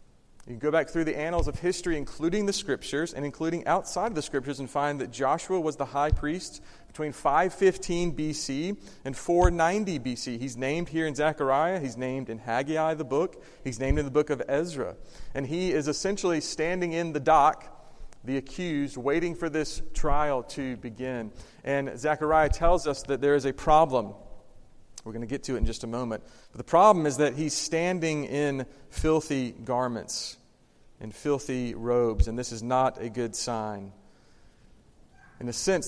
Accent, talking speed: American, 180 wpm